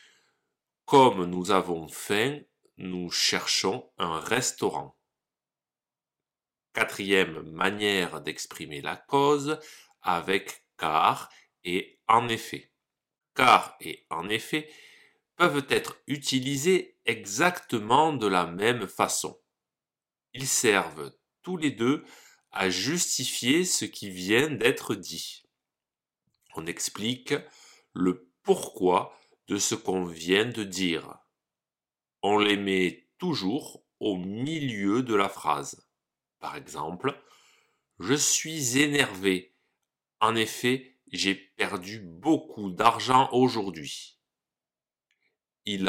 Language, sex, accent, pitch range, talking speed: French, male, French, 95-145 Hz, 95 wpm